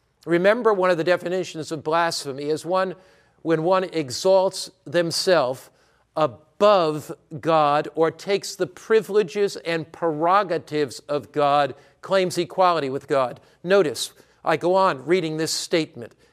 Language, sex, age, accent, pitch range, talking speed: English, male, 50-69, American, 150-190 Hz, 125 wpm